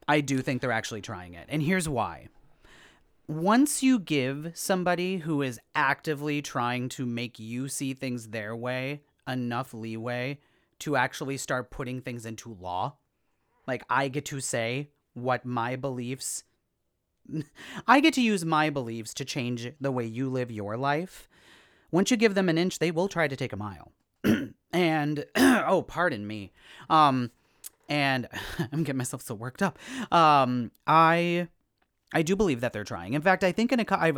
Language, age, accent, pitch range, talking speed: English, 30-49, American, 120-160 Hz, 170 wpm